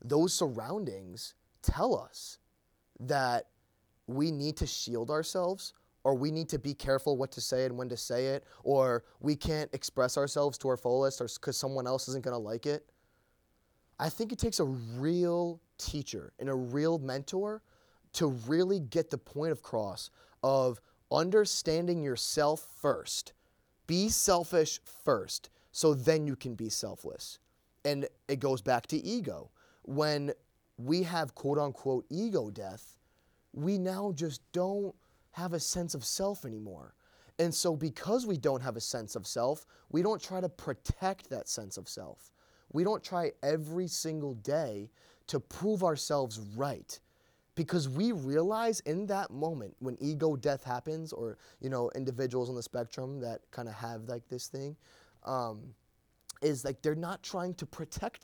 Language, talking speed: English, 160 wpm